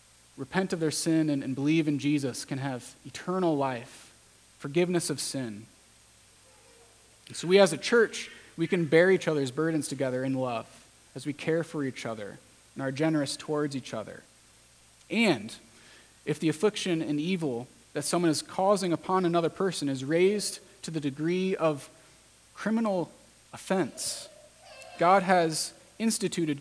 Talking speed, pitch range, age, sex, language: 150 wpm, 135-170 Hz, 30-49, male, English